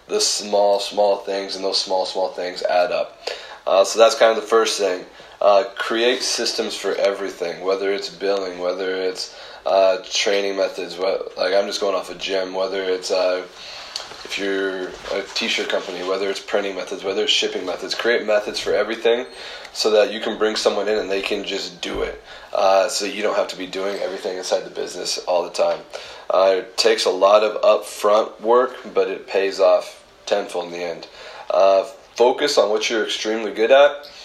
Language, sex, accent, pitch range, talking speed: English, male, American, 95-115 Hz, 195 wpm